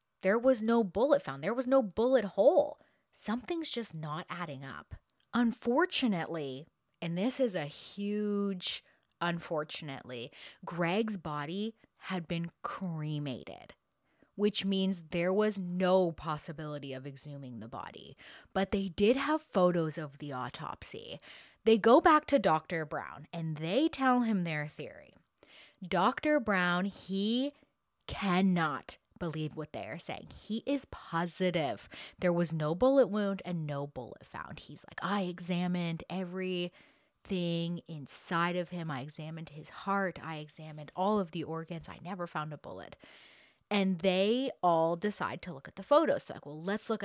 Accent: American